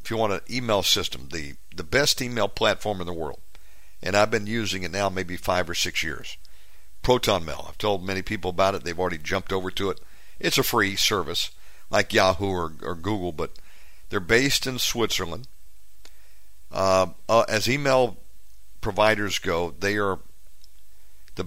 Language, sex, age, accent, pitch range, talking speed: English, male, 50-69, American, 95-110 Hz, 170 wpm